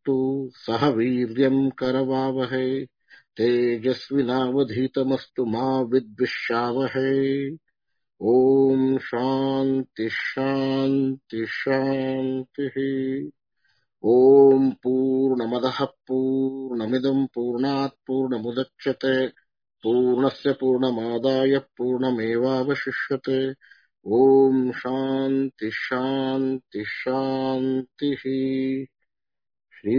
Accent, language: Indian, English